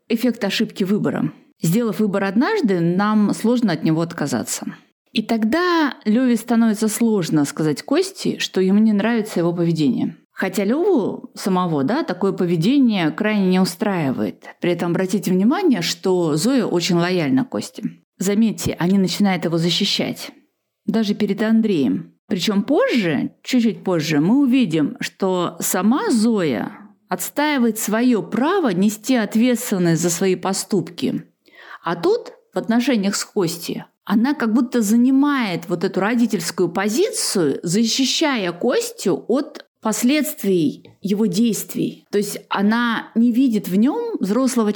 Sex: female